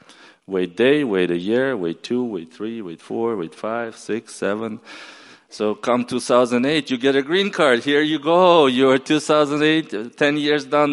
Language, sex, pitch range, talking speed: English, male, 110-140 Hz, 175 wpm